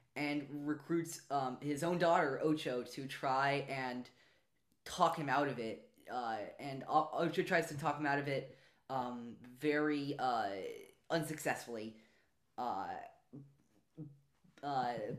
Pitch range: 130-155 Hz